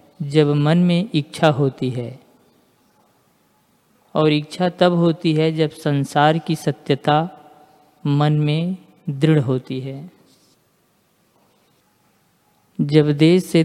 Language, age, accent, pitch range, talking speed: Hindi, 50-69, native, 145-170 Hz, 100 wpm